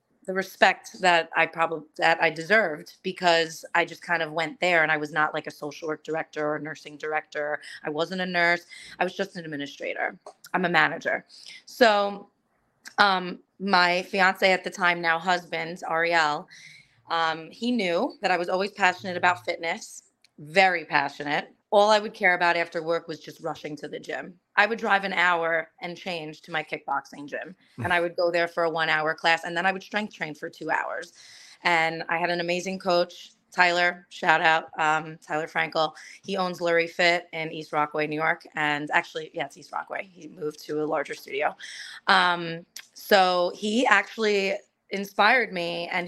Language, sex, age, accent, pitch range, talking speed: English, female, 30-49, American, 160-190 Hz, 190 wpm